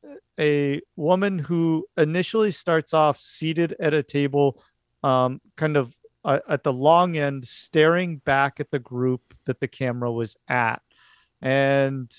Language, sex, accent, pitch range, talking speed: English, male, American, 130-165 Hz, 145 wpm